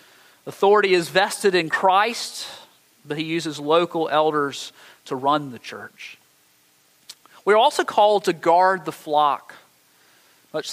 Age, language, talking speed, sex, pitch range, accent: 40-59, English, 125 wpm, male, 140-175 Hz, American